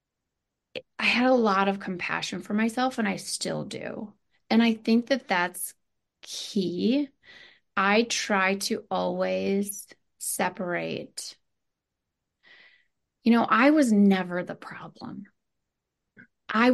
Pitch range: 195-230 Hz